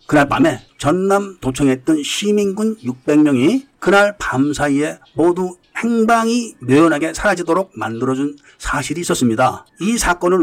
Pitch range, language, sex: 130-180 Hz, Korean, male